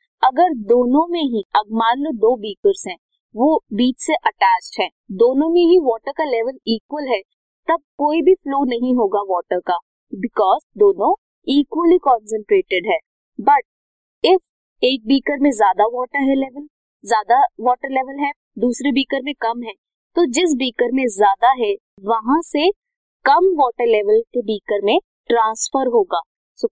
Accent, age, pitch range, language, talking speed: native, 20-39, 230-340 Hz, Hindi, 160 wpm